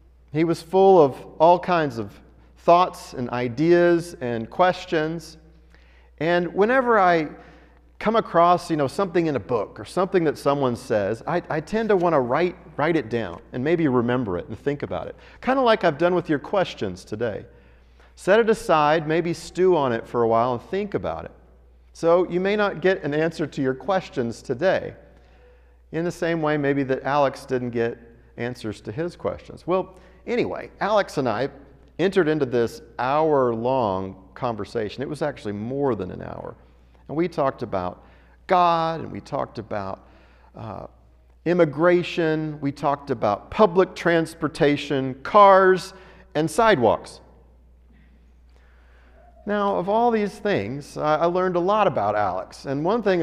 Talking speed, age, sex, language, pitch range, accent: 160 wpm, 40-59, male, English, 110-175 Hz, American